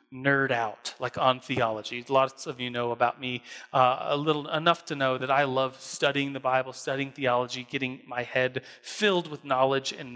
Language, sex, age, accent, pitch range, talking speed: English, male, 30-49, American, 130-160 Hz, 190 wpm